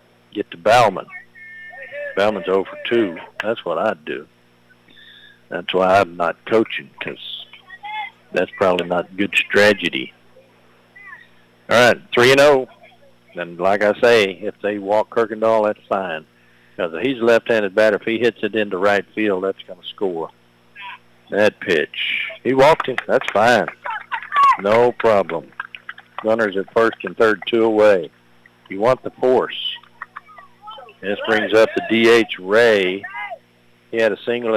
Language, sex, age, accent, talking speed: English, male, 60-79, American, 145 wpm